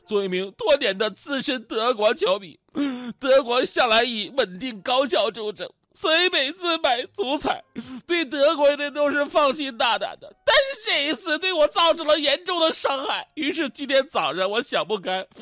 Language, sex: Chinese, male